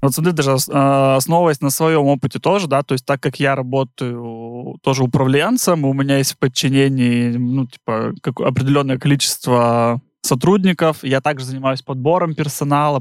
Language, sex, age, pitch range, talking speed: Russian, male, 20-39, 135-160 Hz, 150 wpm